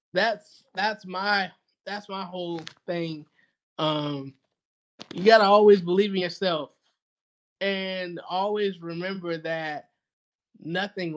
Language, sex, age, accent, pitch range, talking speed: English, male, 20-39, American, 160-185 Hz, 100 wpm